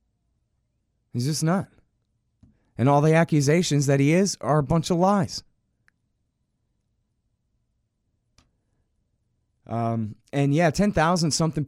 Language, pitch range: English, 110-145 Hz